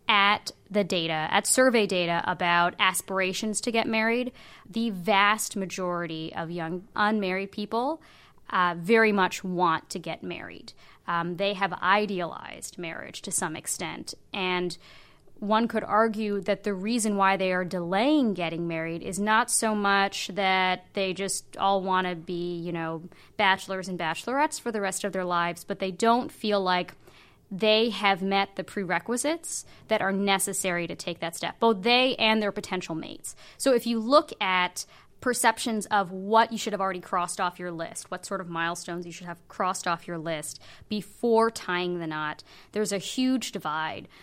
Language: English